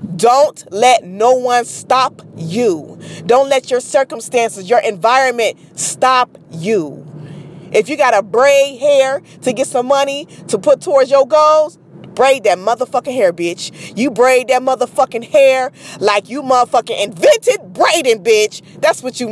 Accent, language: American, English